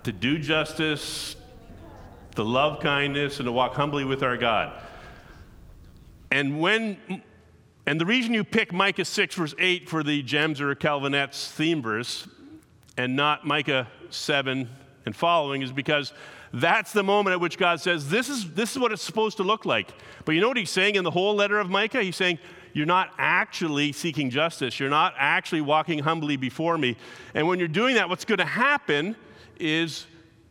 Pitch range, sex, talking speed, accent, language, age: 140-195 Hz, male, 180 wpm, American, English, 40-59